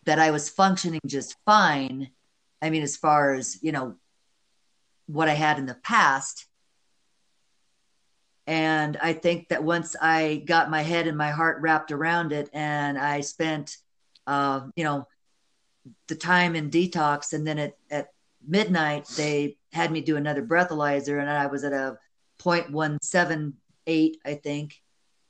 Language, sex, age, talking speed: English, female, 50-69, 150 wpm